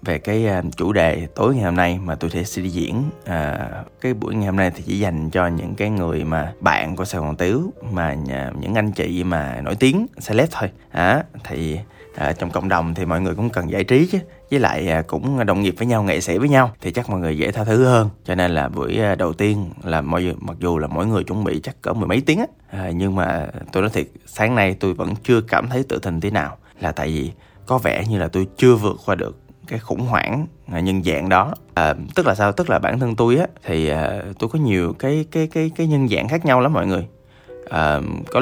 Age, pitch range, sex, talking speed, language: 20-39, 85-120 Hz, male, 250 wpm, Vietnamese